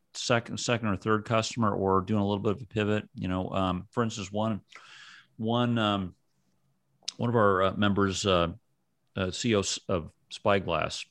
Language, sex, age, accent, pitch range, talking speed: English, male, 40-59, American, 95-120 Hz, 165 wpm